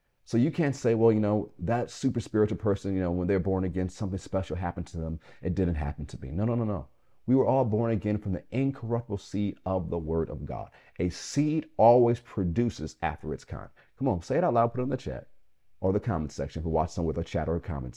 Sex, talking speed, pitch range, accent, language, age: male, 255 wpm, 80-115 Hz, American, English, 40-59